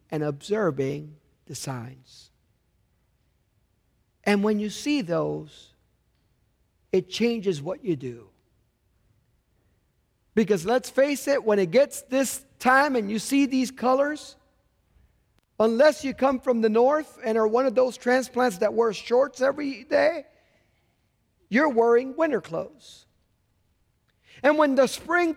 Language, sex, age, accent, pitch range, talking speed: English, male, 50-69, American, 185-295 Hz, 125 wpm